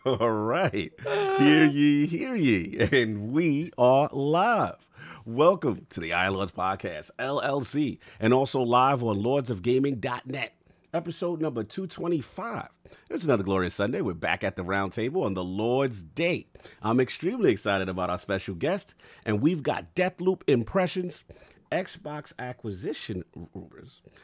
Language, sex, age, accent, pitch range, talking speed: English, male, 40-59, American, 115-165 Hz, 130 wpm